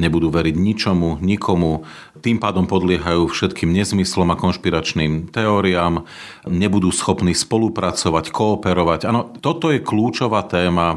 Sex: male